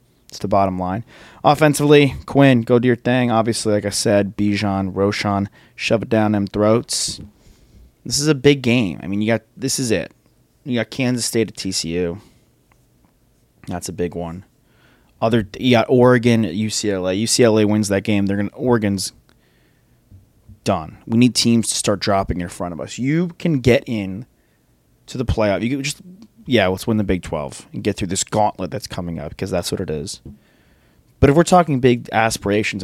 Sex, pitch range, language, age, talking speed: male, 95-125 Hz, English, 20-39, 185 wpm